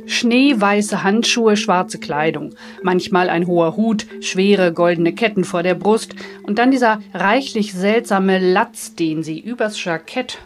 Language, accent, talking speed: German, German, 140 wpm